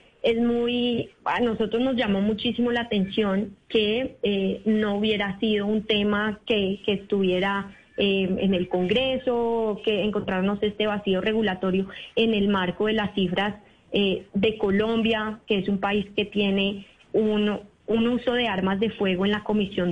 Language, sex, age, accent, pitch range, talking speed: Spanish, female, 20-39, Colombian, 195-220 Hz, 160 wpm